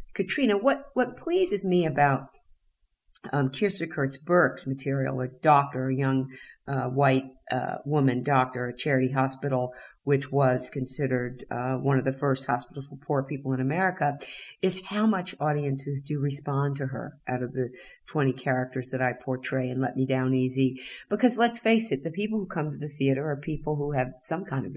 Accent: American